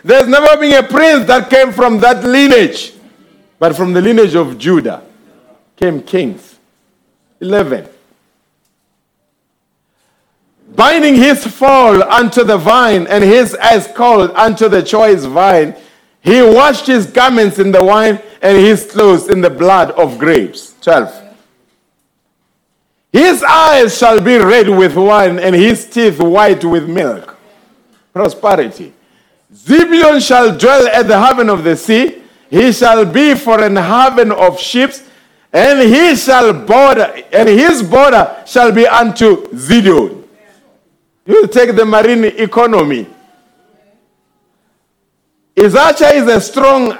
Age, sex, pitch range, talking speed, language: 50-69, male, 205-255 Hz, 130 wpm, English